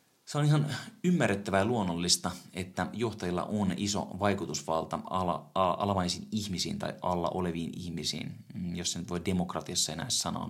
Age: 20-39